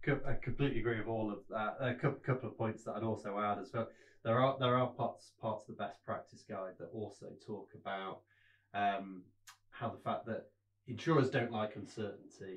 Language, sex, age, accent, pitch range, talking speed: English, male, 20-39, British, 100-120 Hz, 195 wpm